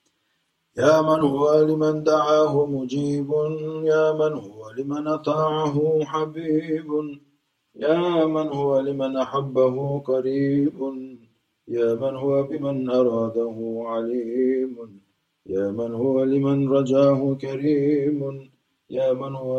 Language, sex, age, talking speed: Turkish, male, 30-49, 100 wpm